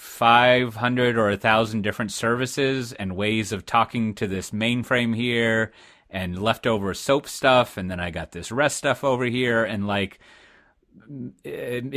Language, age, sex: English, 30-49, male